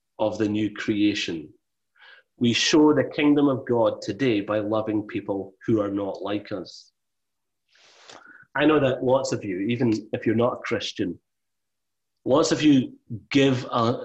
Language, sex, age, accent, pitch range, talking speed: English, male, 30-49, British, 105-140 Hz, 155 wpm